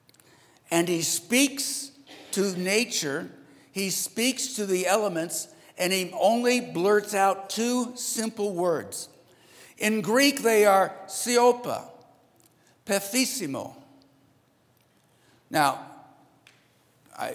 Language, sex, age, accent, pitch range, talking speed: English, male, 60-79, American, 120-185 Hz, 90 wpm